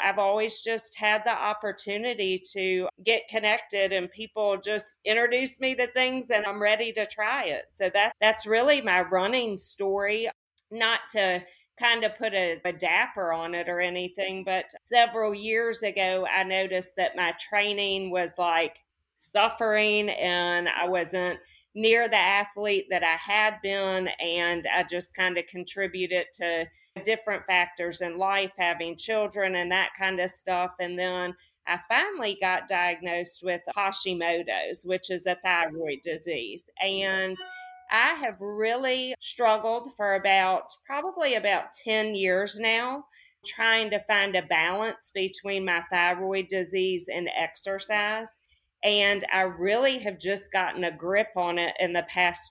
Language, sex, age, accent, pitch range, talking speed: English, female, 40-59, American, 180-215 Hz, 150 wpm